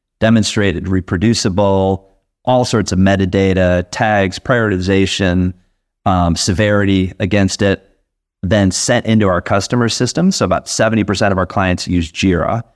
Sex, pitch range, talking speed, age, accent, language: male, 90-110 Hz, 120 wpm, 30-49, American, English